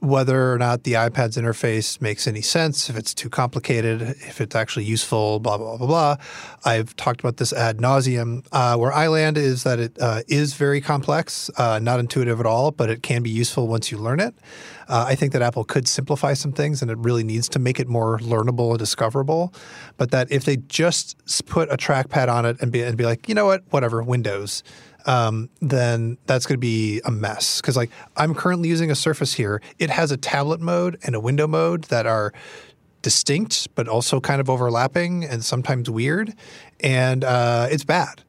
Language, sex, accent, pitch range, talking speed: English, male, American, 115-145 Hz, 210 wpm